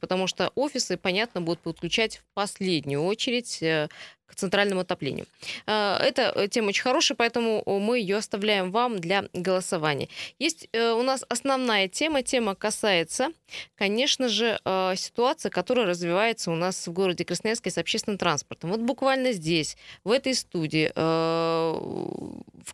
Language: Russian